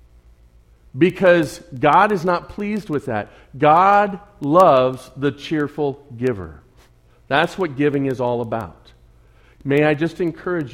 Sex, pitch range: male, 85-145 Hz